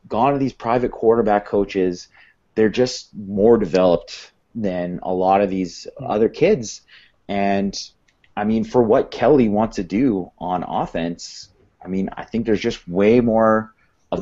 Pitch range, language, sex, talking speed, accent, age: 90-115 Hz, English, male, 155 wpm, American, 30-49